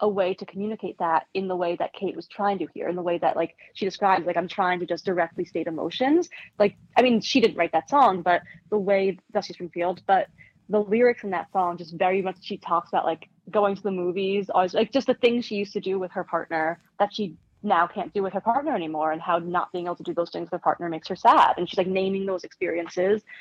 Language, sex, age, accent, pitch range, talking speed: English, female, 20-39, American, 175-215 Hz, 260 wpm